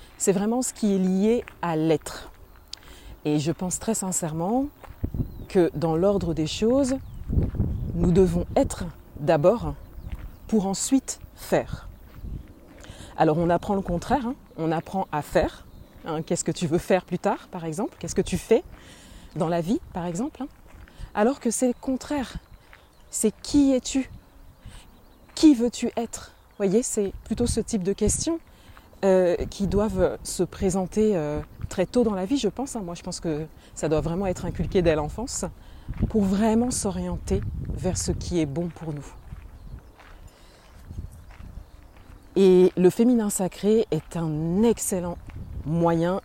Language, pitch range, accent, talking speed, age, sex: French, 160-215 Hz, French, 155 wpm, 20-39, female